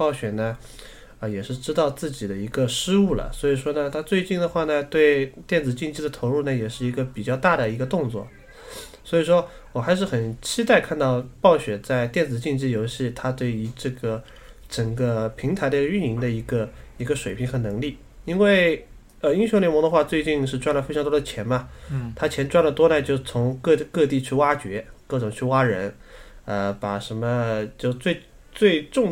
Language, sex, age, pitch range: Chinese, male, 20-39, 120-155 Hz